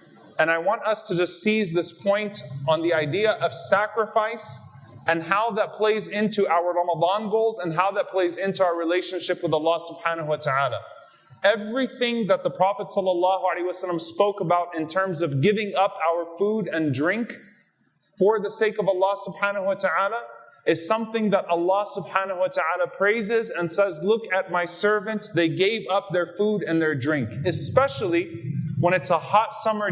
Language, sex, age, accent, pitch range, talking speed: English, male, 30-49, American, 170-210 Hz, 170 wpm